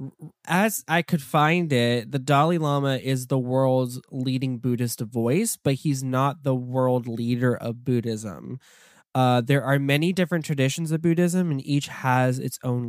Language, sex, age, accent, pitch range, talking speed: English, male, 10-29, American, 125-150 Hz, 165 wpm